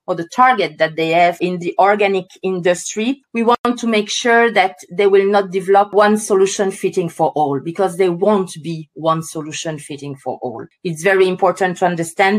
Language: English